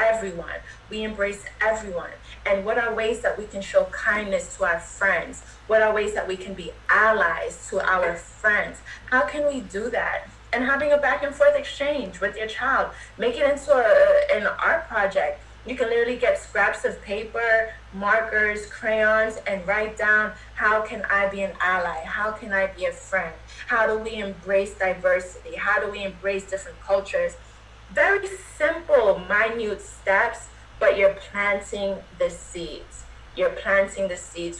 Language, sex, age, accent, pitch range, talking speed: English, female, 20-39, American, 195-245 Hz, 165 wpm